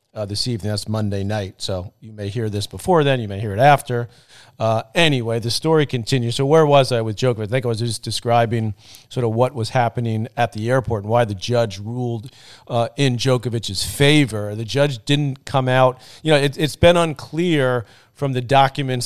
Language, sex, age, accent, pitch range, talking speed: English, male, 40-59, American, 115-140 Hz, 205 wpm